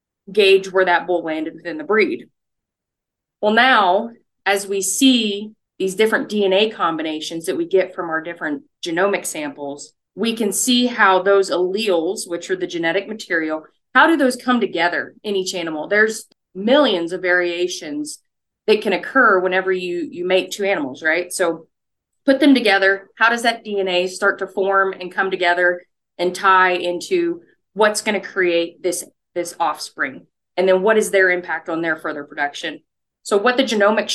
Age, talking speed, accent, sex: 30-49, 170 wpm, American, female